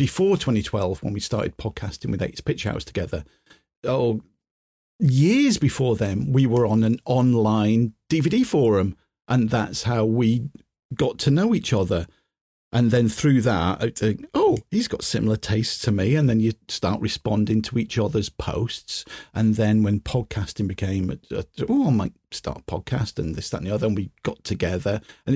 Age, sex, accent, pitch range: 40-59, male, British, 110-145 Hz